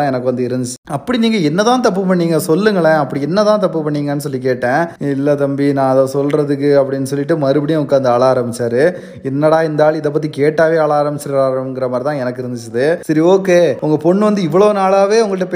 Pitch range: 130-160 Hz